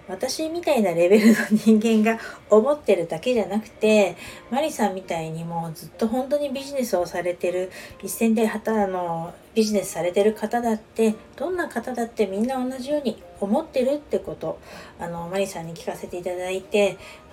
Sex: female